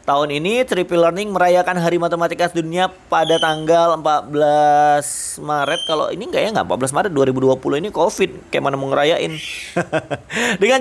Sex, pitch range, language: male, 135-175 Hz, Indonesian